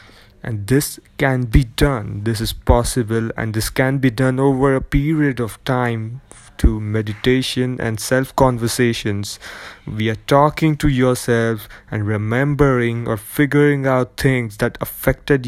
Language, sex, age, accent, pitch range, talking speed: English, male, 20-39, Indian, 115-135 Hz, 135 wpm